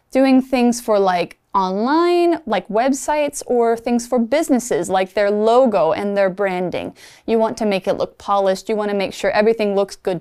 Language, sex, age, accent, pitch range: Chinese, female, 20-39, American, 190-270 Hz